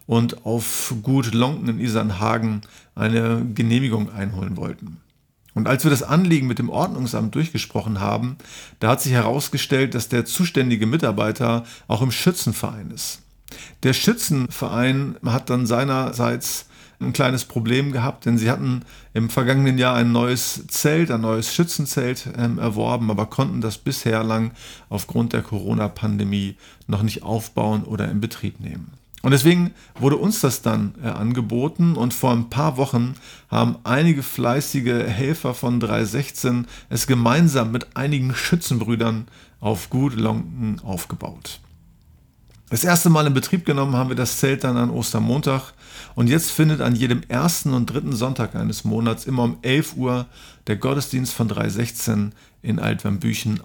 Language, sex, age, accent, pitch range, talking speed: German, male, 40-59, German, 110-135 Hz, 145 wpm